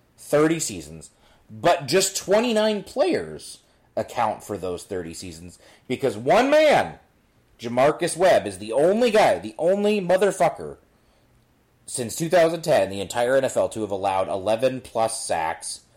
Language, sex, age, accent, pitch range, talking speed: English, male, 30-49, American, 105-155 Hz, 125 wpm